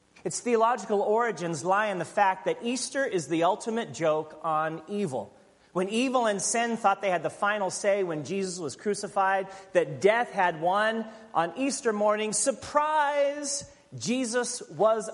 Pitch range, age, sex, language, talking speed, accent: 160-220 Hz, 40-59, male, English, 155 wpm, American